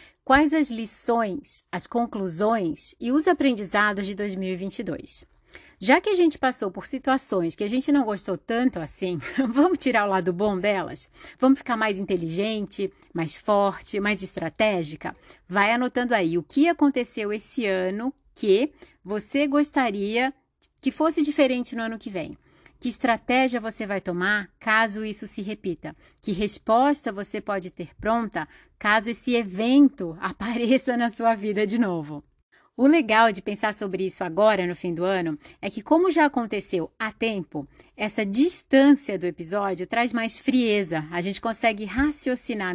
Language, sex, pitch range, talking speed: Portuguese, female, 195-260 Hz, 155 wpm